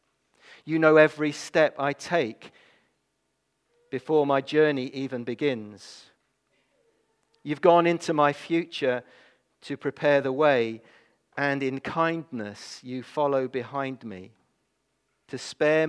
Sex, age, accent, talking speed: male, 40-59, British, 110 wpm